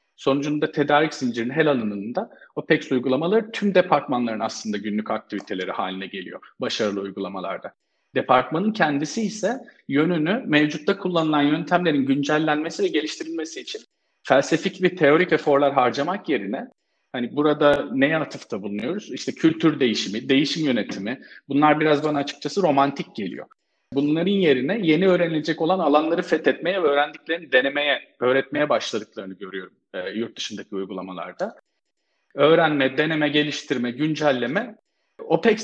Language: Turkish